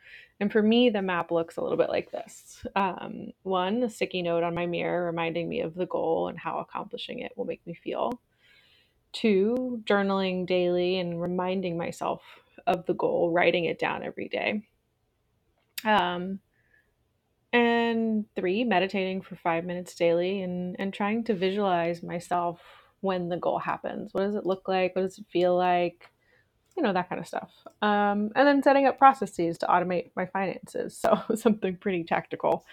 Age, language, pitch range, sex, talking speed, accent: 20-39, English, 180-225 Hz, female, 170 wpm, American